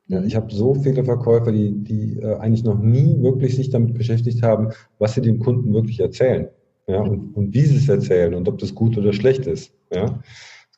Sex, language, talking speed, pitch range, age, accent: male, German, 215 wpm, 110-130 Hz, 50-69, German